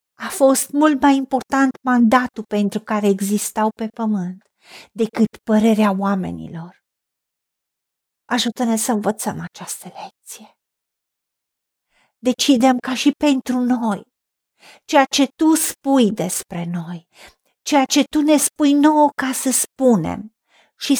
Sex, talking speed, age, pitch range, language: female, 115 wpm, 50-69, 220-275 Hz, Romanian